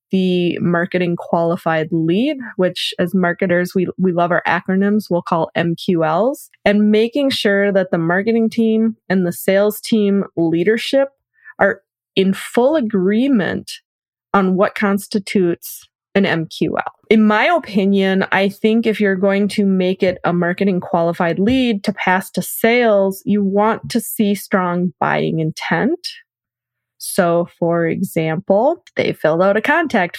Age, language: 20-39, English